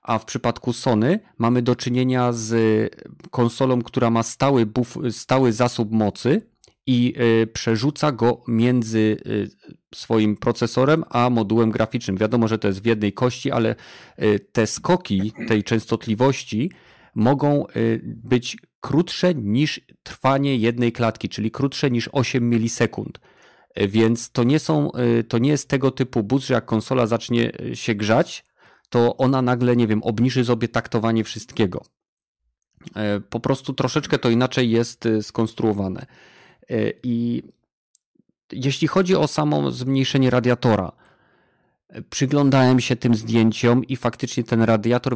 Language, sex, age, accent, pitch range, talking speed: Polish, male, 40-59, native, 110-130 Hz, 125 wpm